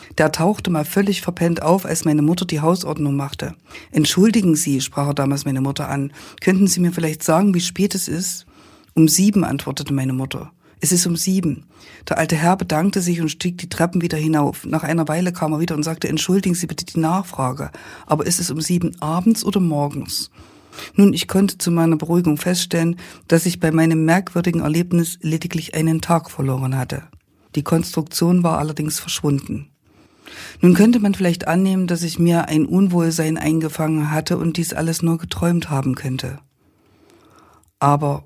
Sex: female